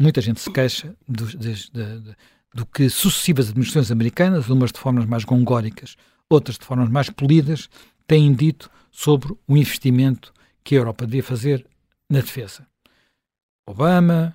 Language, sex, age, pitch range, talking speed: Portuguese, male, 60-79, 125-175 Hz, 140 wpm